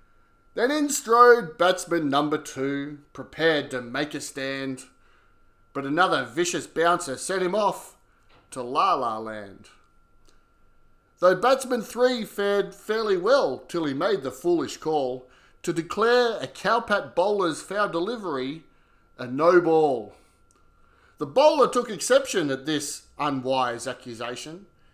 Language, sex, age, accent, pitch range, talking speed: English, male, 30-49, Australian, 130-215 Hz, 120 wpm